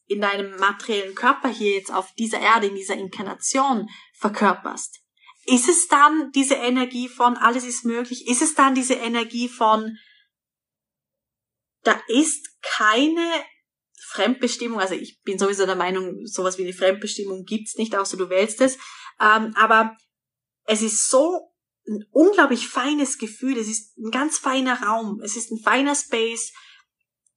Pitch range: 205-260 Hz